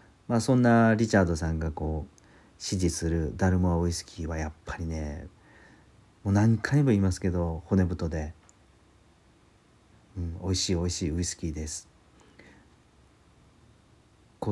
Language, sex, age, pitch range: Japanese, male, 40-59, 85-105 Hz